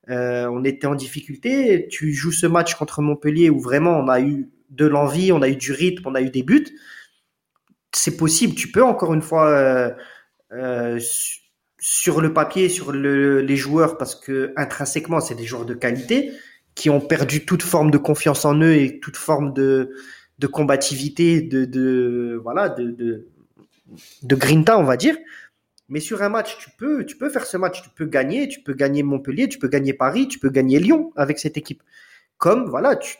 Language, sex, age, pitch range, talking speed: French, male, 30-49, 135-175 Hz, 195 wpm